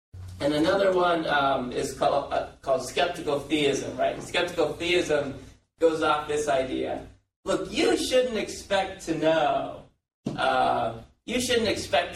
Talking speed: 135 wpm